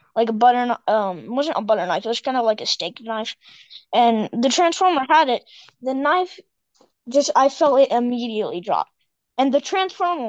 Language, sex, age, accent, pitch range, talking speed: English, female, 20-39, American, 235-325 Hz, 200 wpm